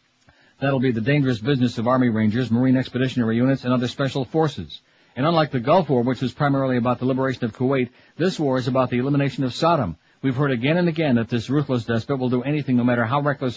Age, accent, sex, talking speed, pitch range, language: 60-79, American, male, 230 wpm, 125-145 Hz, English